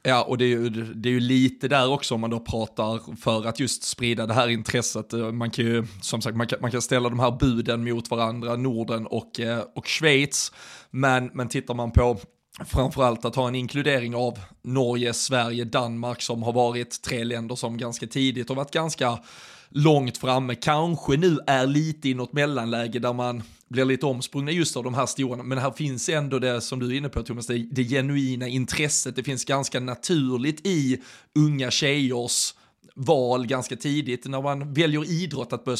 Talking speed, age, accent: 195 wpm, 20-39, native